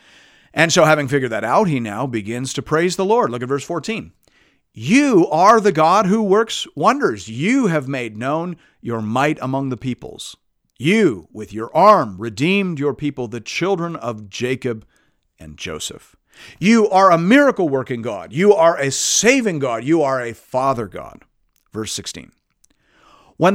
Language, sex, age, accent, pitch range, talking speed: English, male, 50-69, American, 120-155 Hz, 165 wpm